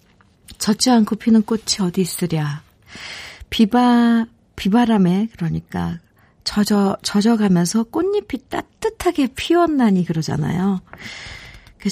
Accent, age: native, 50-69